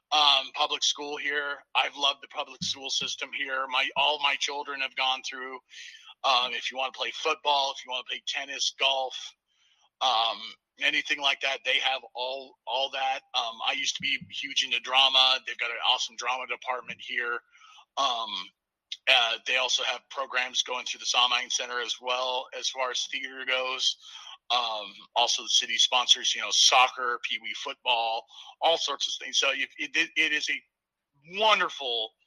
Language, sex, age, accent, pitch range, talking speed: English, male, 40-59, American, 130-185 Hz, 180 wpm